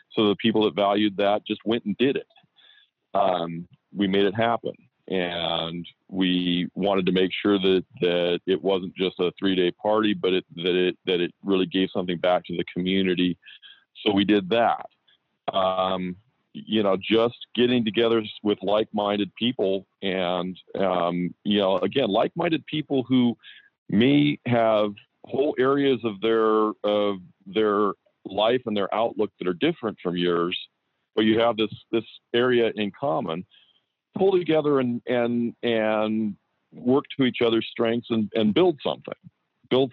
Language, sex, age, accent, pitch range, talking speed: English, male, 40-59, American, 95-115 Hz, 160 wpm